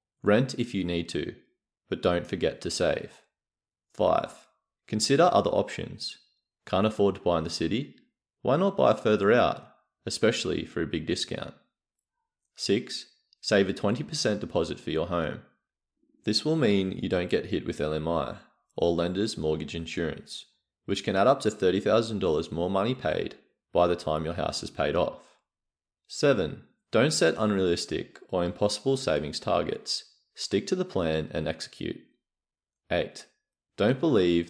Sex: male